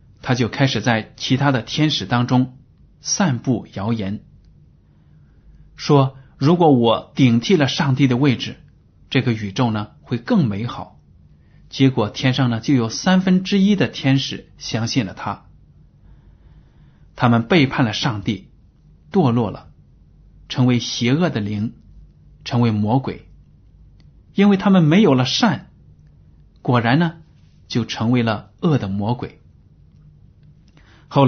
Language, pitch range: Chinese, 110-145 Hz